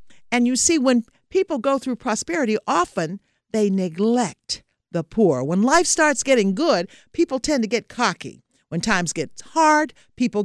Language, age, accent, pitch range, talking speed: English, 50-69, American, 165-265 Hz, 160 wpm